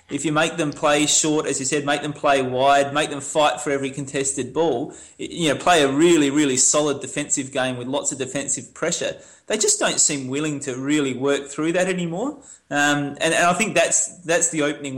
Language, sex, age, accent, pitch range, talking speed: English, male, 20-39, Australian, 130-150 Hz, 215 wpm